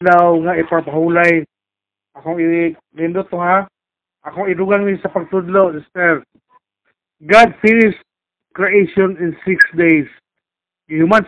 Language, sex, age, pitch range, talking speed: Filipino, male, 50-69, 175-210 Hz, 100 wpm